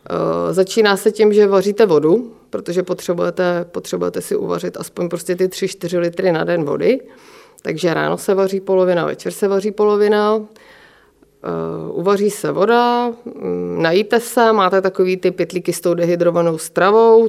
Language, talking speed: Czech, 140 wpm